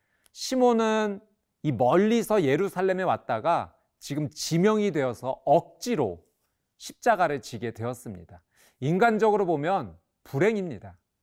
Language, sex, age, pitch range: Korean, male, 40-59, 125-195 Hz